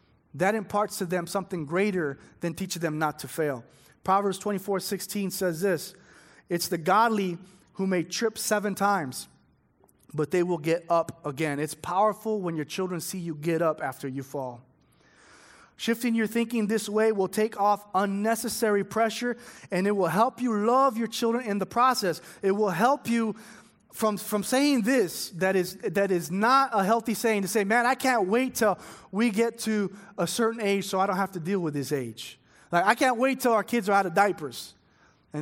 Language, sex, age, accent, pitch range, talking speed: English, male, 30-49, American, 170-220 Hz, 195 wpm